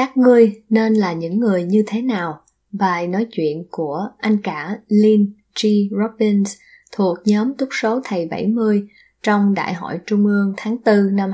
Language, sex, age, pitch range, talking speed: Vietnamese, female, 10-29, 185-230 Hz, 170 wpm